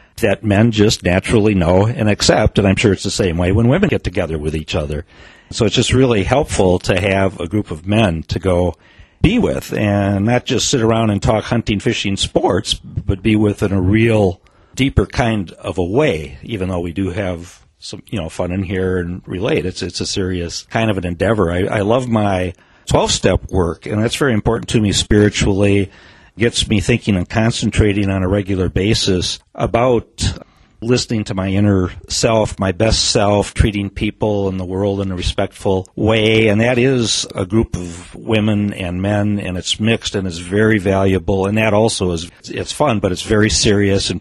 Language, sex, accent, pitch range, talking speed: English, male, American, 90-110 Hz, 195 wpm